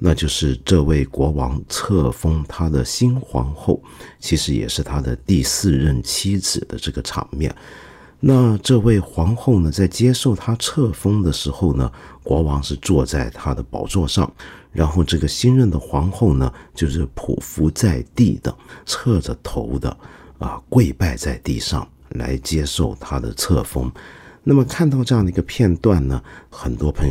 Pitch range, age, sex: 70-110 Hz, 50-69, male